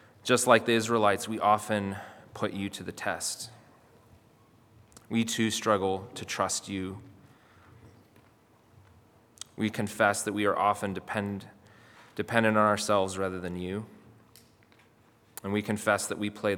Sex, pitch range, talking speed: male, 90-110 Hz, 130 wpm